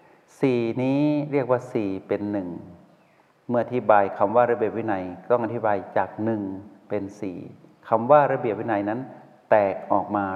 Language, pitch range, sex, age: Thai, 100-125 Hz, male, 60-79